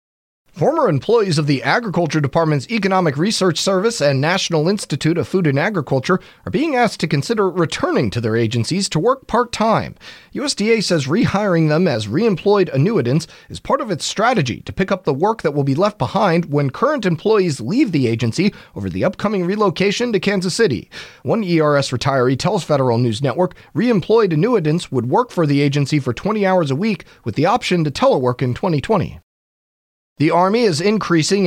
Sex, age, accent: male, 30-49, American